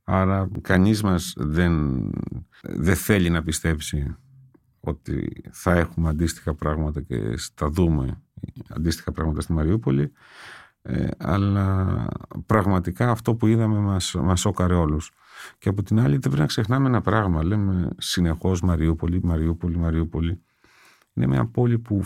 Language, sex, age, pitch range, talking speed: Greek, male, 50-69, 85-110 Hz, 135 wpm